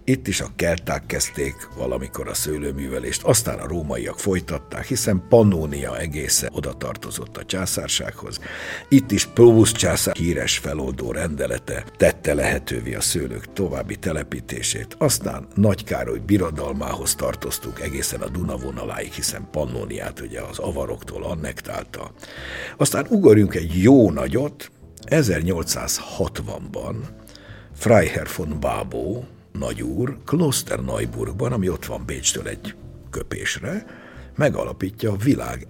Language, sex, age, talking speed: Hungarian, male, 60-79, 110 wpm